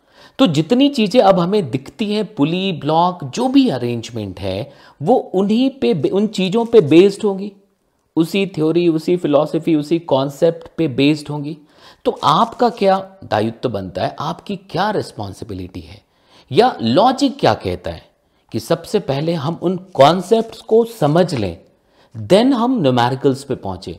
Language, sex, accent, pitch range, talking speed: Hindi, male, native, 130-205 Hz, 145 wpm